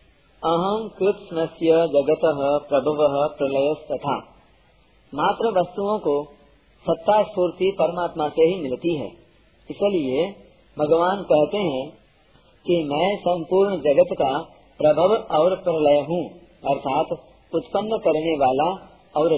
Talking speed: 105 wpm